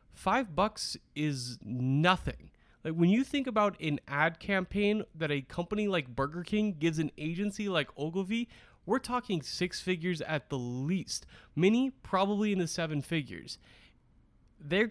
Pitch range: 145-200 Hz